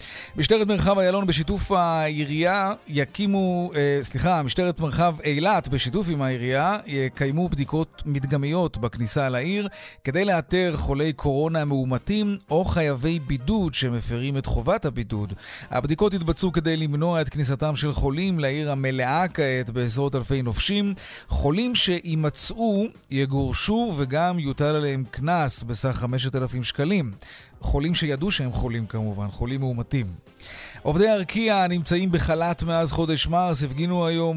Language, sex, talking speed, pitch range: Hebrew, male, 125 wpm, 135-175 Hz